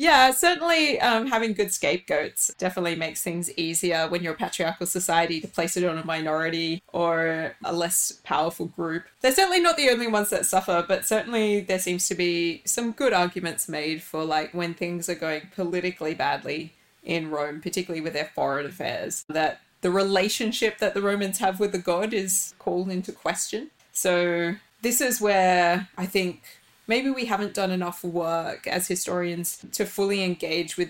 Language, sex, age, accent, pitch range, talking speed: English, female, 20-39, Australian, 165-195 Hz, 175 wpm